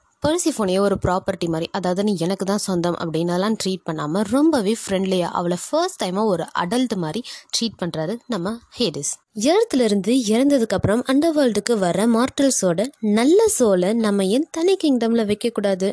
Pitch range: 185-245 Hz